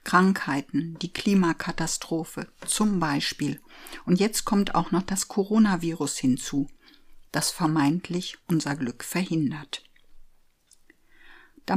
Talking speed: 95 wpm